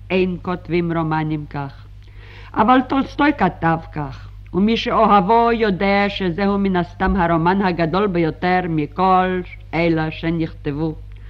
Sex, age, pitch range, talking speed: female, 50-69, 150-210 Hz, 105 wpm